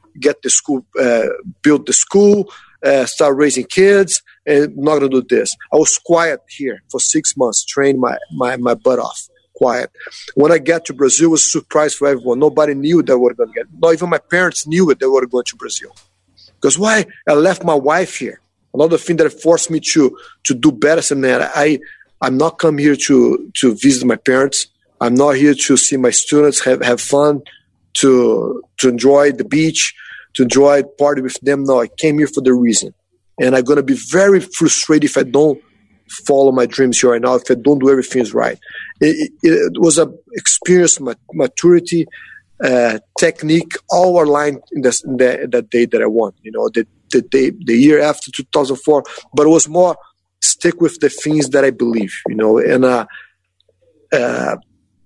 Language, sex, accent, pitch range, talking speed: English, male, Brazilian, 130-165 Hz, 200 wpm